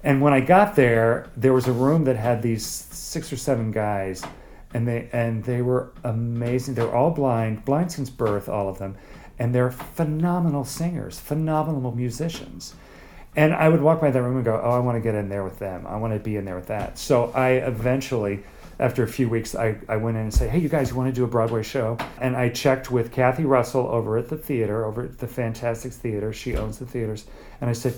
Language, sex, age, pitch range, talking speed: English, male, 40-59, 110-130 Hz, 230 wpm